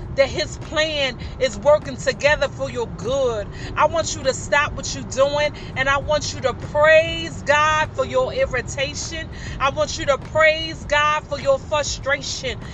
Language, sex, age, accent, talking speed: English, female, 30-49, American, 170 wpm